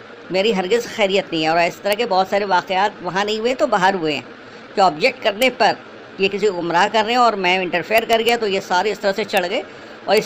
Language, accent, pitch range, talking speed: Hindi, native, 185-225 Hz, 265 wpm